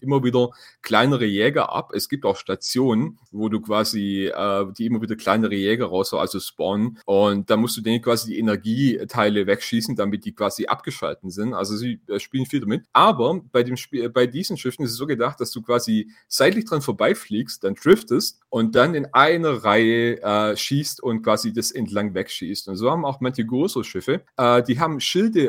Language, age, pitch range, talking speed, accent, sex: English, 30-49, 110-140 Hz, 200 wpm, German, male